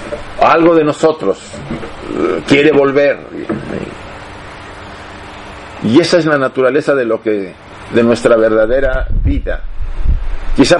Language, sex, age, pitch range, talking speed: Spanish, male, 50-69, 100-160 Hz, 100 wpm